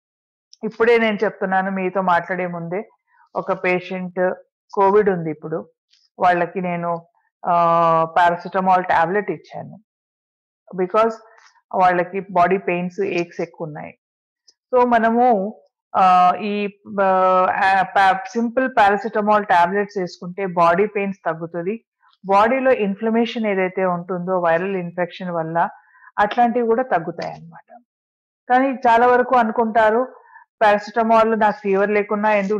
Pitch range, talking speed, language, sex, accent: 185-230 Hz, 100 wpm, Telugu, female, native